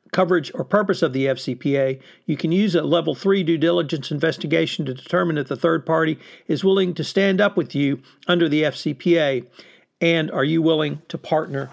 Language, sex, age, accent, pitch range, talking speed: English, male, 50-69, American, 150-185 Hz, 190 wpm